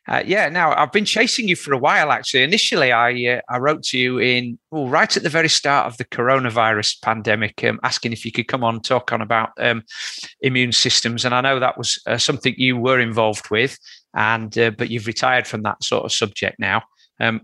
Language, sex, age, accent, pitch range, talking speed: English, male, 40-59, British, 115-140 Hz, 225 wpm